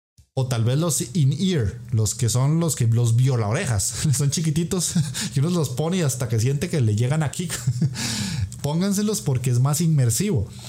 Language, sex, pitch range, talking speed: Spanish, male, 115-150 Hz, 180 wpm